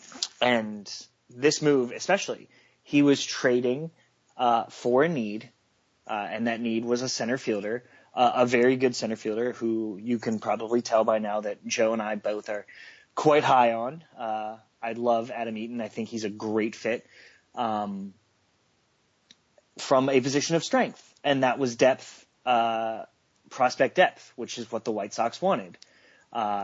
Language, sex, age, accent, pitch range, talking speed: English, male, 30-49, American, 115-145 Hz, 165 wpm